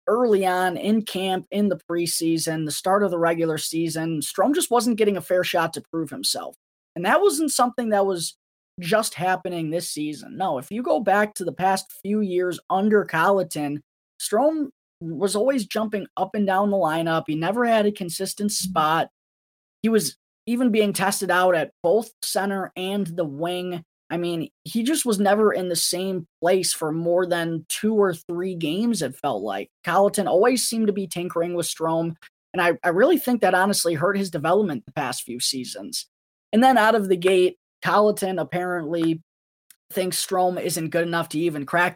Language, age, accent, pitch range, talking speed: English, 20-39, American, 165-205 Hz, 185 wpm